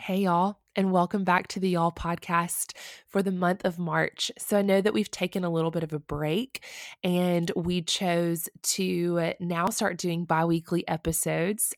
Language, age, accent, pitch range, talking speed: English, 20-39, American, 170-205 Hz, 180 wpm